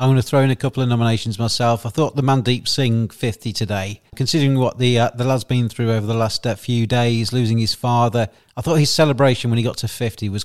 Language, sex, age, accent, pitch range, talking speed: English, male, 40-59, British, 110-130 Hz, 255 wpm